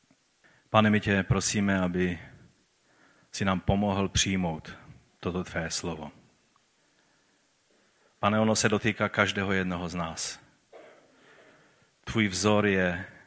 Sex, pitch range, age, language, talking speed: male, 90-105 Hz, 30-49, Czech, 105 wpm